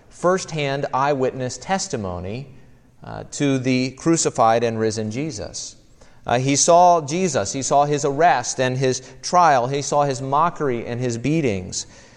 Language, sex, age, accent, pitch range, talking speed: English, male, 40-59, American, 125-155 Hz, 140 wpm